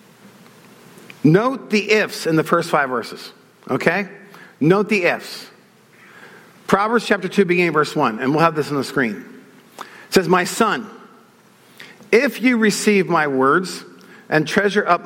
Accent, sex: American, male